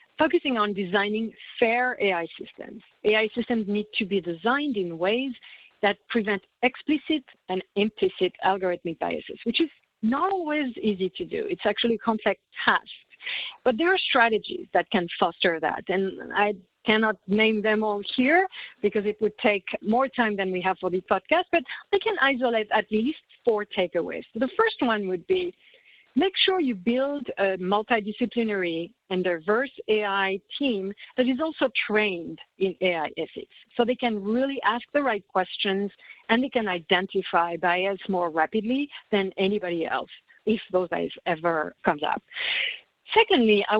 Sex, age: female, 50-69